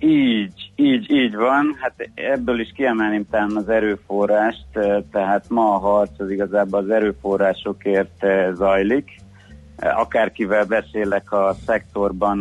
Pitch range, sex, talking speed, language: 95-110 Hz, male, 110 wpm, Hungarian